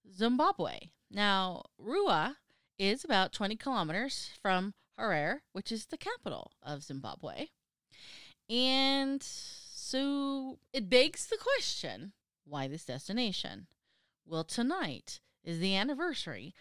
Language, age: English, 30-49